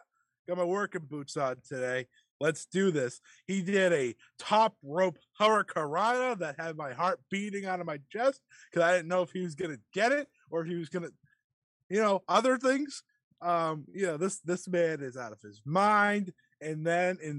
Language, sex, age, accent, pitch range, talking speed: English, male, 20-39, American, 145-205 Hz, 195 wpm